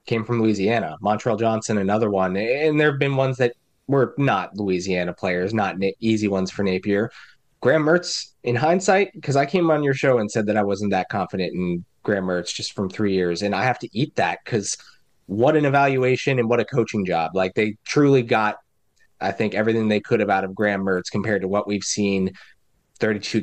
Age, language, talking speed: 20-39, English, 210 wpm